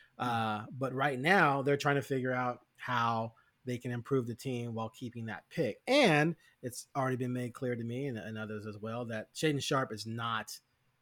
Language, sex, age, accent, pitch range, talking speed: English, male, 30-49, American, 120-155 Hz, 200 wpm